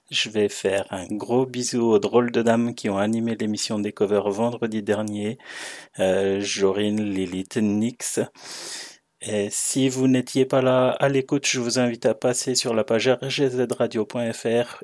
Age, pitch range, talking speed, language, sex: 30-49, 105-125 Hz, 160 wpm, French, male